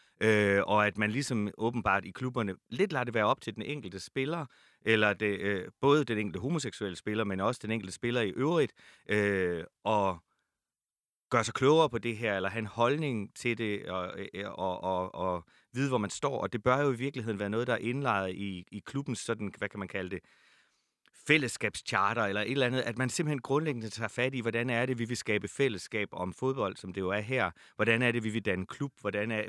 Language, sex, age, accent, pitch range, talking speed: Danish, male, 30-49, native, 100-120 Hz, 220 wpm